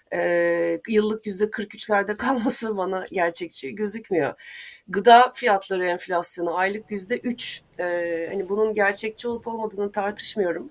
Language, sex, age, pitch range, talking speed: Turkish, female, 30-49, 180-230 Hz, 120 wpm